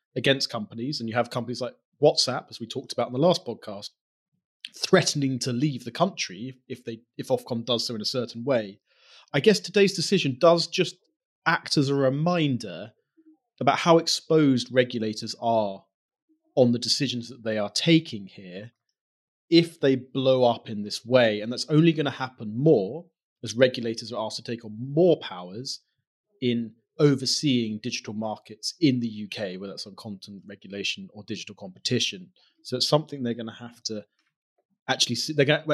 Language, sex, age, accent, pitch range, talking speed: English, male, 30-49, British, 115-155 Hz, 175 wpm